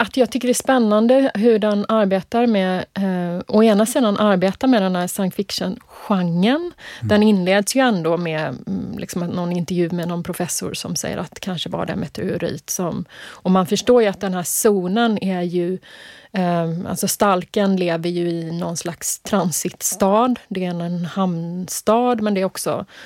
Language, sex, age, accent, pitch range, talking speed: Swedish, female, 30-49, native, 180-225 Hz, 175 wpm